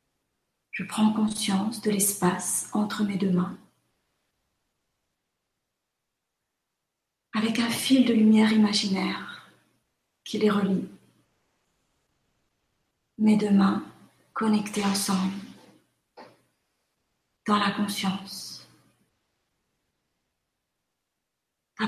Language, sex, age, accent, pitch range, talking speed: French, female, 40-59, French, 200-235 Hz, 75 wpm